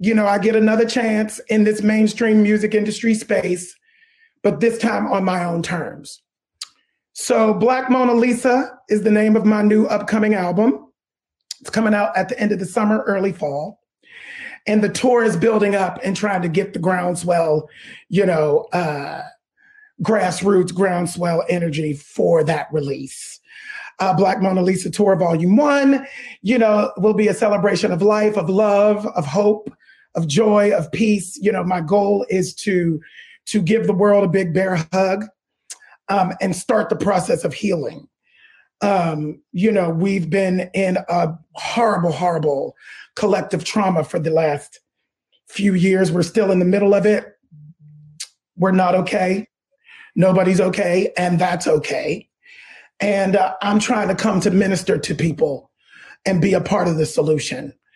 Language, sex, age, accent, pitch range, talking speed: English, male, 30-49, American, 180-215 Hz, 160 wpm